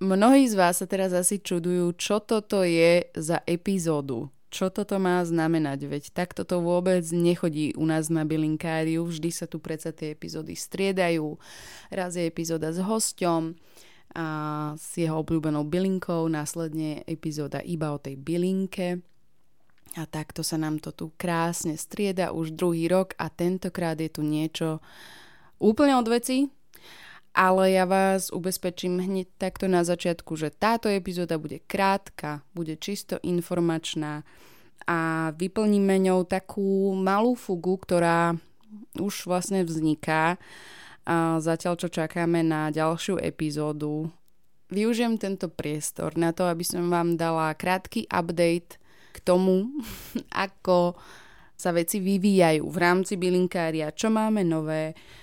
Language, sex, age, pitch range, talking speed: Slovak, female, 20-39, 160-190 Hz, 135 wpm